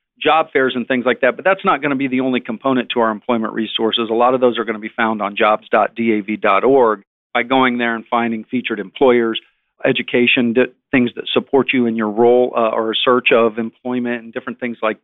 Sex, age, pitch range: male, 50-69, 115-140 Hz